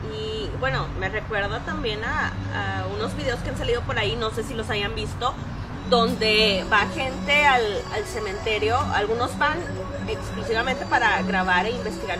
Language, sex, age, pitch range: Spanish, female, 20-39, 220-270 Hz